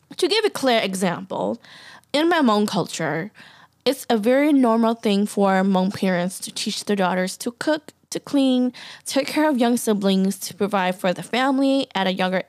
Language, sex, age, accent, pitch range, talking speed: English, female, 10-29, American, 200-265 Hz, 185 wpm